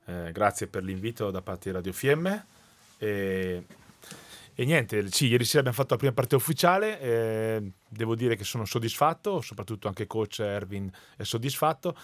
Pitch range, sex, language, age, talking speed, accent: 95-115 Hz, male, Italian, 30-49, 165 wpm, native